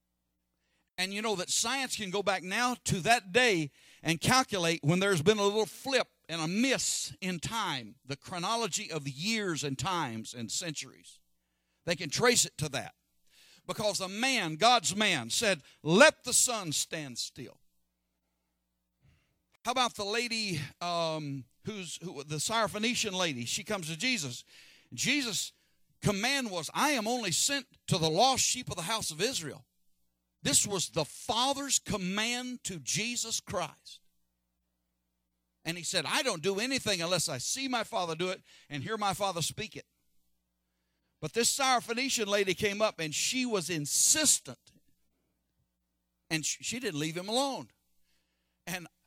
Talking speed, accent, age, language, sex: 155 wpm, American, 60-79, English, male